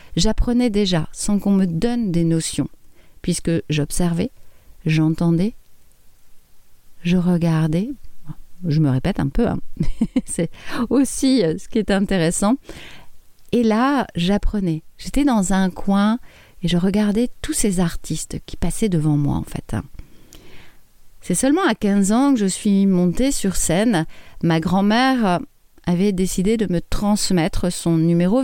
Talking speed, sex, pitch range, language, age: 135 wpm, female, 160-220 Hz, French, 40-59